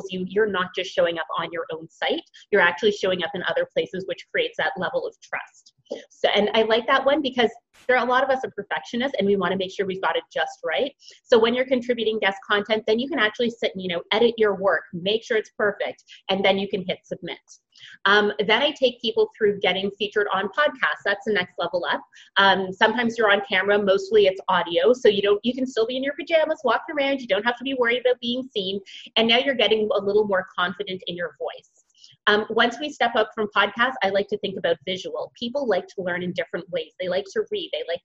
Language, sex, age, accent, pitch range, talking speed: English, female, 30-49, American, 190-255 Hz, 245 wpm